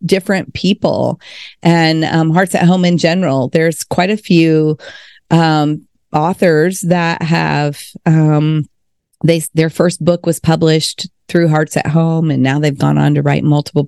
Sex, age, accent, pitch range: female, 40-59, American, 155-195 Hz